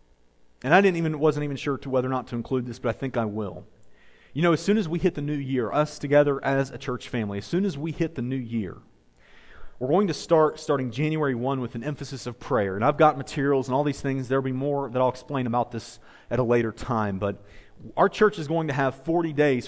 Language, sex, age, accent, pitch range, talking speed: English, male, 40-59, American, 135-175 Hz, 260 wpm